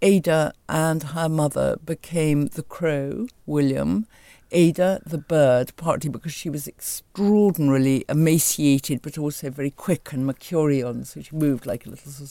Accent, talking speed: British, 140 wpm